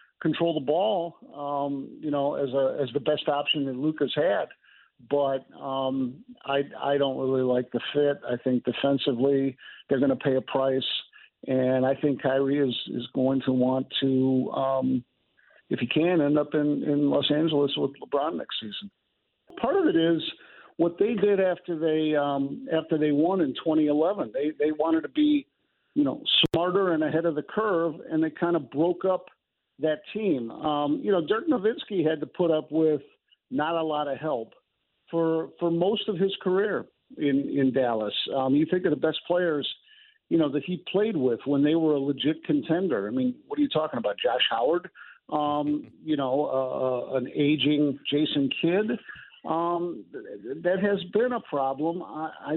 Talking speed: 185 wpm